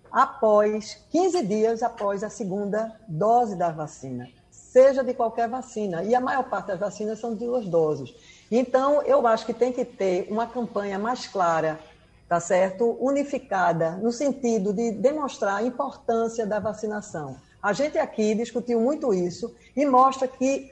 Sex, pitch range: female, 200-255 Hz